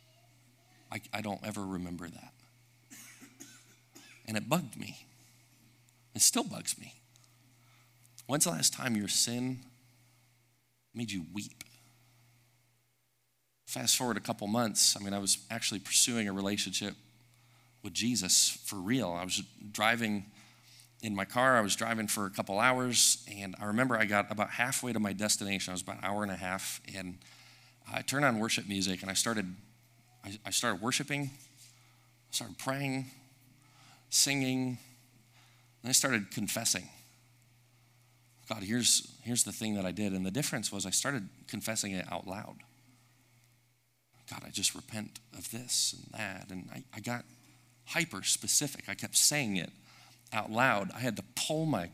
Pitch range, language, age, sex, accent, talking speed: 105-125 Hz, English, 40-59, male, American, 155 wpm